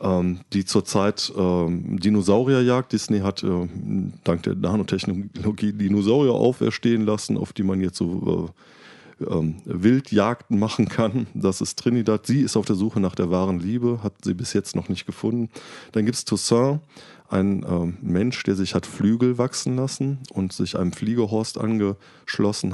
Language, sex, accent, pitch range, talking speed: German, male, German, 95-115 Hz, 160 wpm